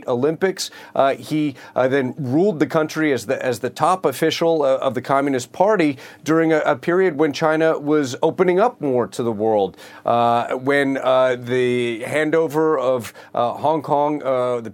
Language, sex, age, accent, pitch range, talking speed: English, male, 40-59, American, 125-155 Hz, 170 wpm